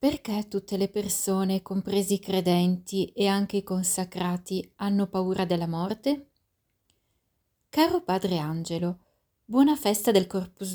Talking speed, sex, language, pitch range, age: 125 wpm, female, Italian, 180-220 Hz, 30-49